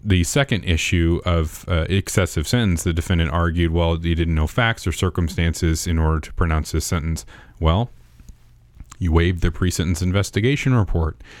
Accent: American